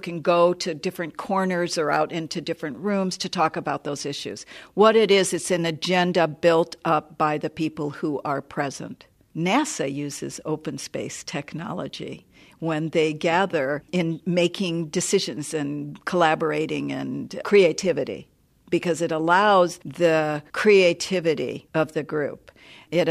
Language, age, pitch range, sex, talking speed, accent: English, 60-79, 160-200 Hz, female, 140 wpm, American